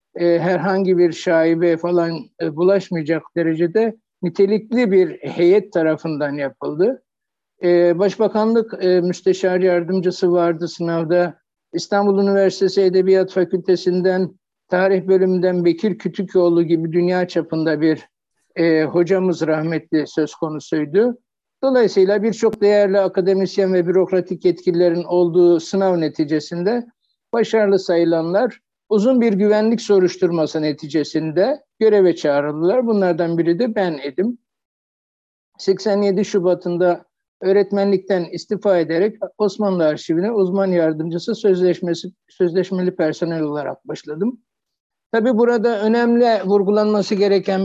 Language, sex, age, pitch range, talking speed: Turkish, male, 60-79, 170-205 Hz, 95 wpm